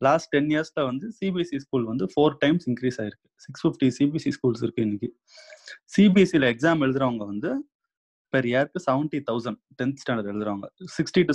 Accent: native